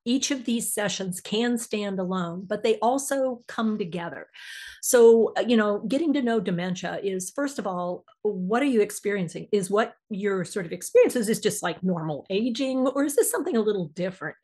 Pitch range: 185-235 Hz